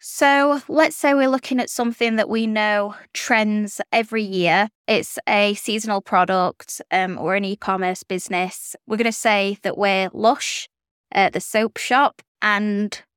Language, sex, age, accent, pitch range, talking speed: English, female, 20-39, British, 190-215 Hz, 155 wpm